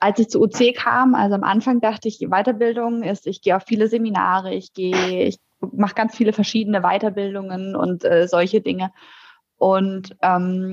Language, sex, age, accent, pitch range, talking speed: German, female, 20-39, German, 190-220 Hz, 175 wpm